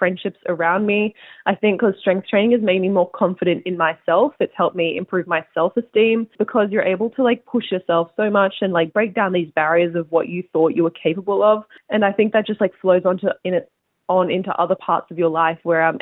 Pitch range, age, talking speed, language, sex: 170-205 Hz, 20-39, 235 wpm, Punjabi, female